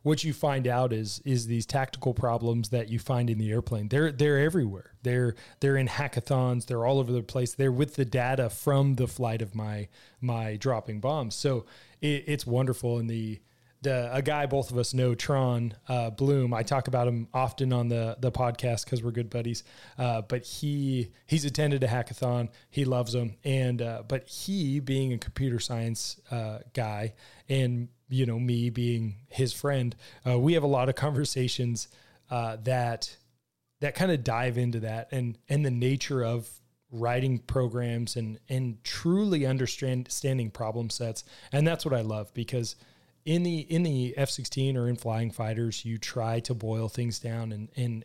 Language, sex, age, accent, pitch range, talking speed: English, male, 30-49, American, 115-135 Hz, 185 wpm